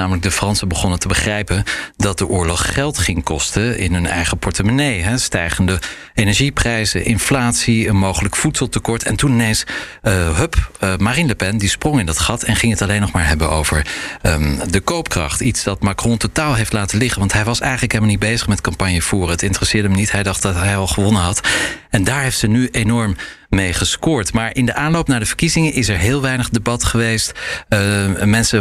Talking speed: 200 wpm